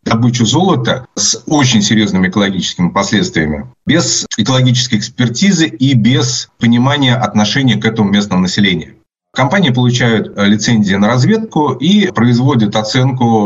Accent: native